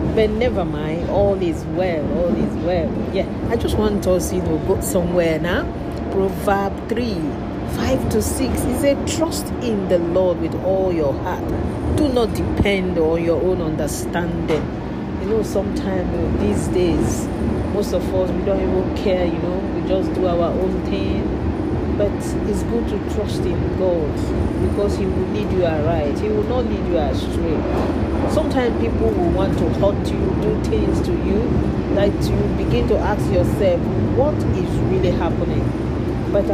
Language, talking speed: English, 170 wpm